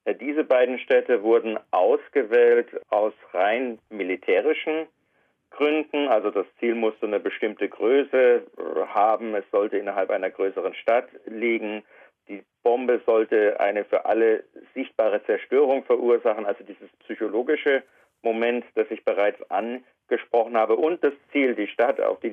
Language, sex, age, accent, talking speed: German, male, 50-69, German, 130 wpm